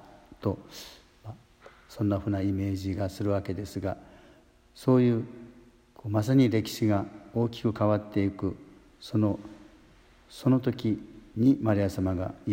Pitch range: 100-115 Hz